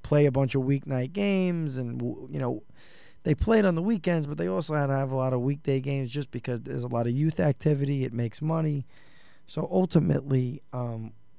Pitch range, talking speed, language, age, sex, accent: 125-150 Hz, 205 wpm, English, 20-39, male, American